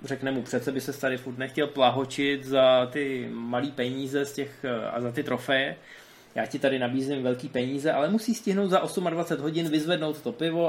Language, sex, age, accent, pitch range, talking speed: Czech, male, 20-39, native, 130-170 Hz, 190 wpm